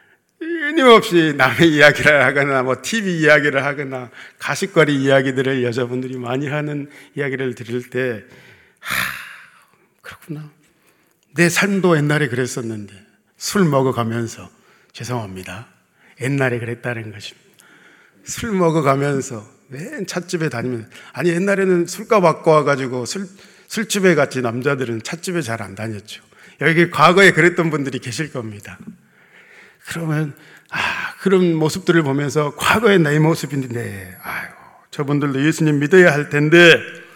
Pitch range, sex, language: 130-185 Hz, male, Korean